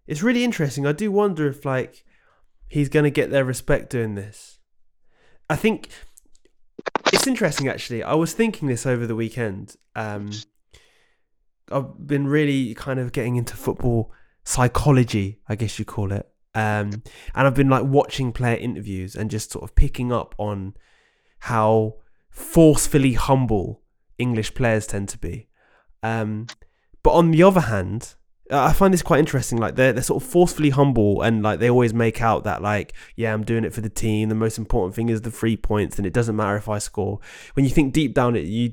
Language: English